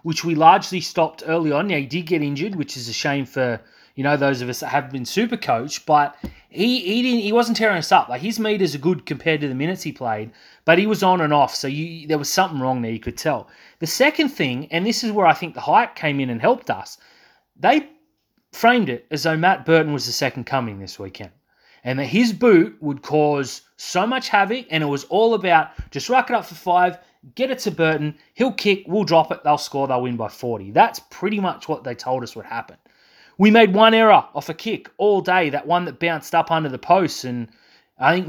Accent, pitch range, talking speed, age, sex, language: Australian, 140-195 Hz, 245 wpm, 30-49, male, English